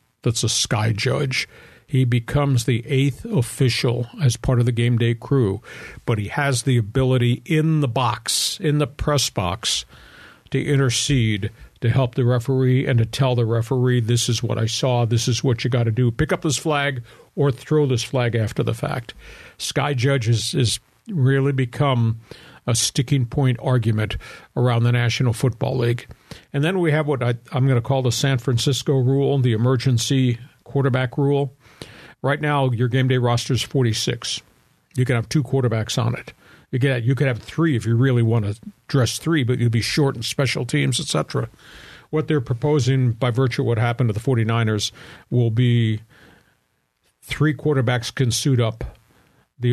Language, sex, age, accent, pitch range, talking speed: English, male, 50-69, American, 115-135 Hz, 180 wpm